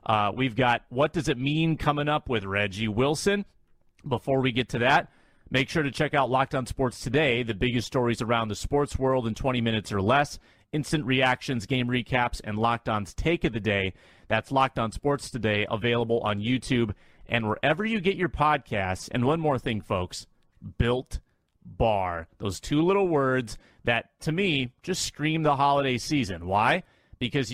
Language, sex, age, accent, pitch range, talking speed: English, male, 30-49, American, 115-145 Hz, 185 wpm